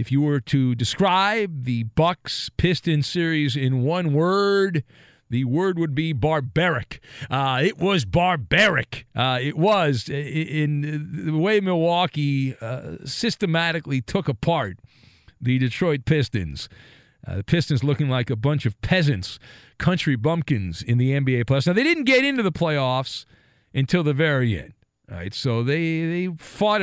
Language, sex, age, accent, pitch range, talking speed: English, male, 50-69, American, 130-175 Hz, 150 wpm